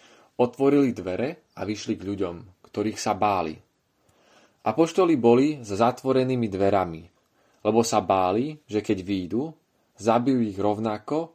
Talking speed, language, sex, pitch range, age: 120 wpm, Slovak, male, 105-130 Hz, 30-49